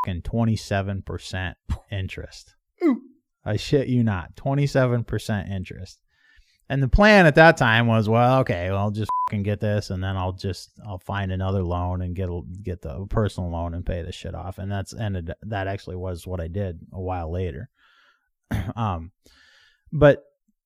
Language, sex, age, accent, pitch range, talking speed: English, male, 30-49, American, 95-115 Hz, 165 wpm